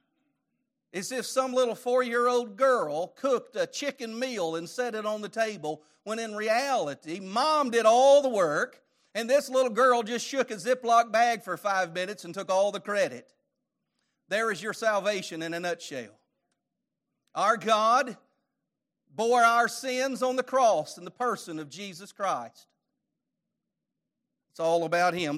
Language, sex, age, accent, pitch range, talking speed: English, male, 40-59, American, 195-255 Hz, 160 wpm